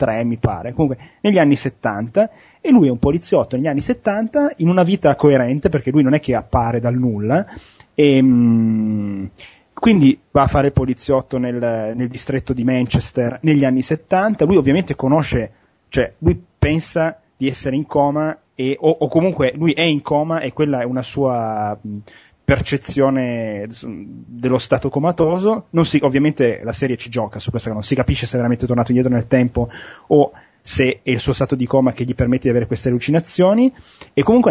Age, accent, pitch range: 30-49, native, 125-150 Hz